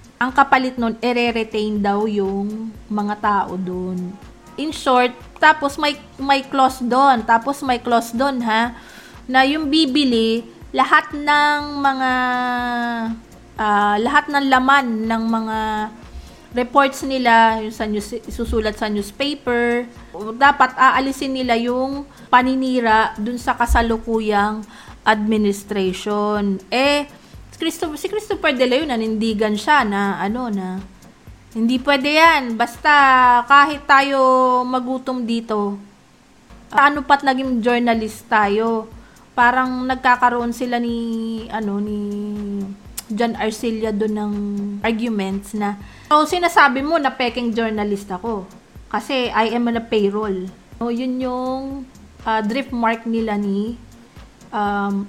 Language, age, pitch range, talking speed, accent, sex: Filipino, 20-39, 215-260 Hz, 120 wpm, native, female